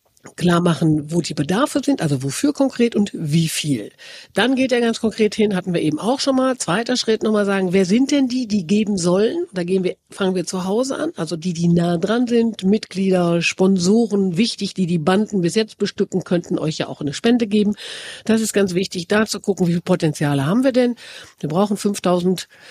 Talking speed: 215 wpm